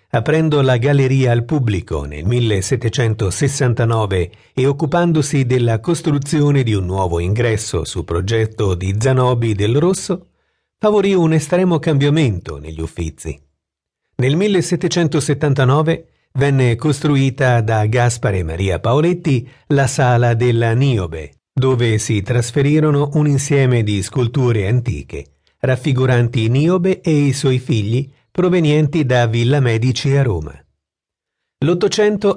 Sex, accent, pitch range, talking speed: male, native, 110-150 Hz, 110 wpm